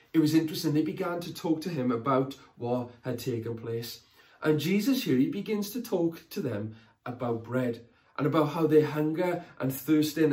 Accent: British